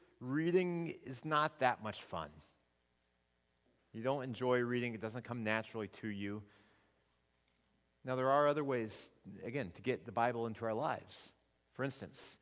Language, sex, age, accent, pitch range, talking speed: English, male, 40-59, American, 110-155 Hz, 150 wpm